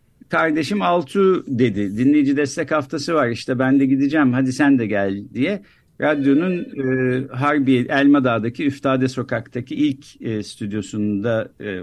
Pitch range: 125-170 Hz